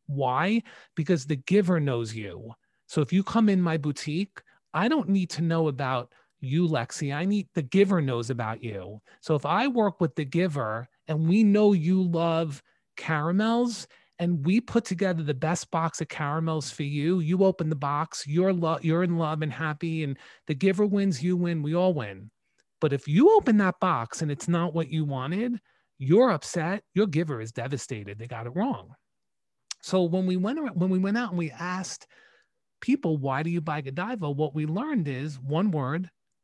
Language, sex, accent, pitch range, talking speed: English, male, American, 140-185 Hz, 190 wpm